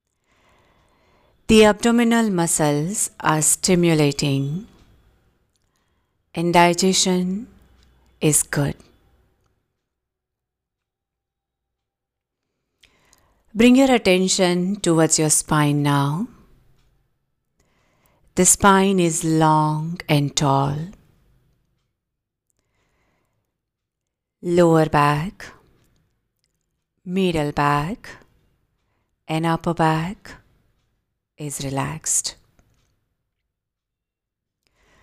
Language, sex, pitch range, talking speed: English, female, 120-175 Hz, 55 wpm